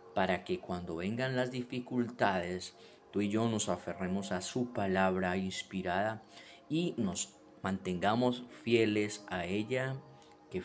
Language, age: Spanish, 30-49